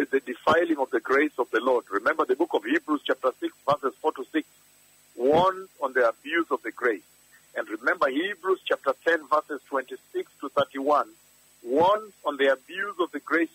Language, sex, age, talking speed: English, male, 50-69, 180 wpm